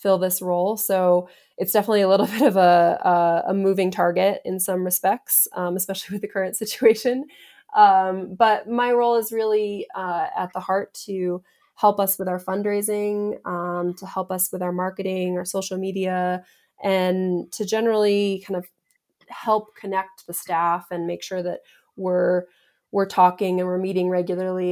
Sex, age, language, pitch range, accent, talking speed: female, 20-39, English, 175-200 Hz, American, 170 wpm